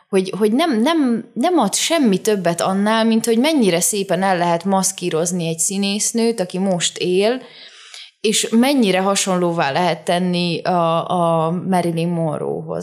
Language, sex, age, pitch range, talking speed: Hungarian, female, 20-39, 170-215 Hz, 140 wpm